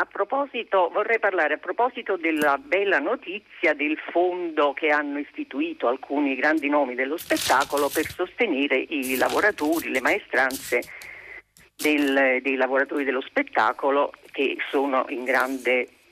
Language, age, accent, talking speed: Italian, 50-69, native, 125 wpm